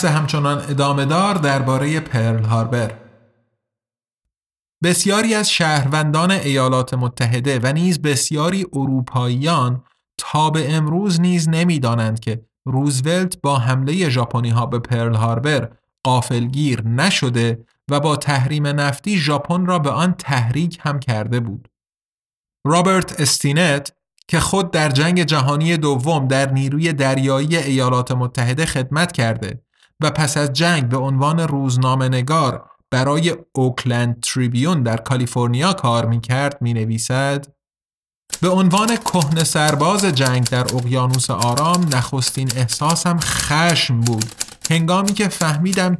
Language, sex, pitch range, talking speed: Persian, male, 125-165 Hz, 110 wpm